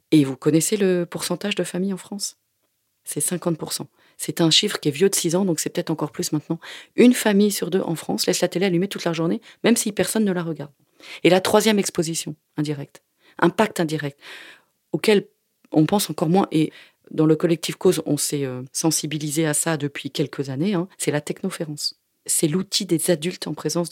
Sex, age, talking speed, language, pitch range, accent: female, 40-59, 200 wpm, French, 155-190 Hz, French